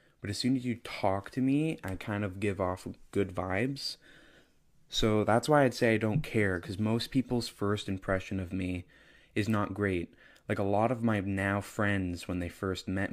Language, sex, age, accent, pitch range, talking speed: English, male, 20-39, American, 90-105 Hz, 200 wpm